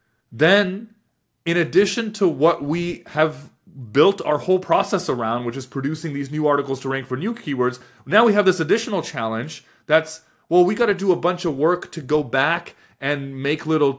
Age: 30-49